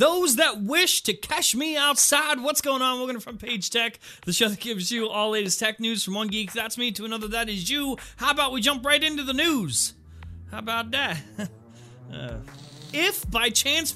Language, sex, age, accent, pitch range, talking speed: English, male, 30-49, American, 215-280 Hz, 215 wpm